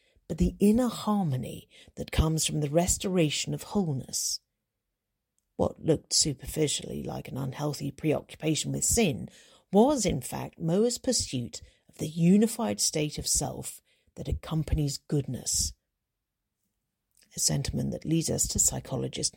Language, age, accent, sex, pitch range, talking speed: English, 40-59, British, female, 145-200 Hz, 125 wpm